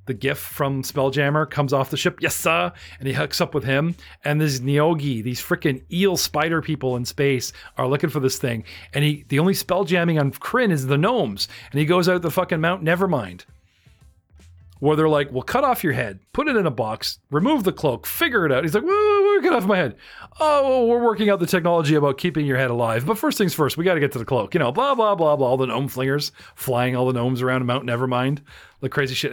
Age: 40-59